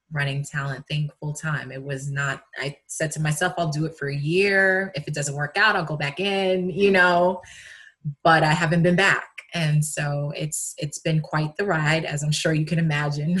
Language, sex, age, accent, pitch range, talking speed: English, female, 20-39, American, 140-155 Hz, 215 wpm